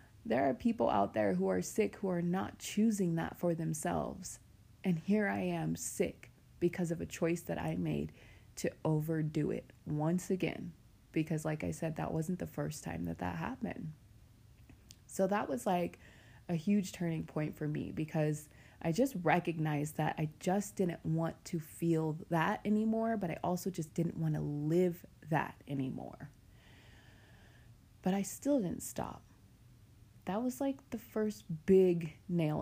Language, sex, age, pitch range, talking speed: English, female, 20-39, 145-195 Hz, 165 wpm